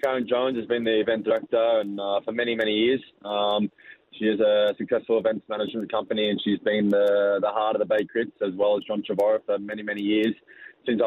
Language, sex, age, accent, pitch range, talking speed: English, male, 20-39, Australian, 105-120 Hz, 220 wpm